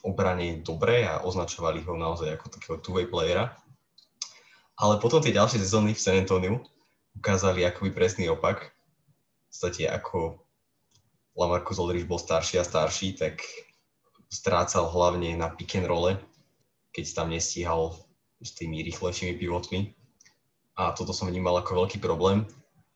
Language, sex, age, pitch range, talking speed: Slovak, male, 20-39, 90-100 Hz, 140 wpm